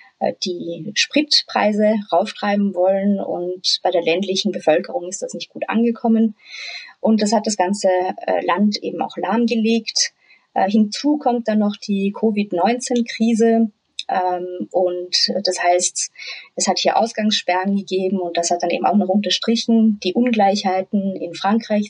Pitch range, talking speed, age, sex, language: 185-230 Hz, 135 wpm, 30-49, female, German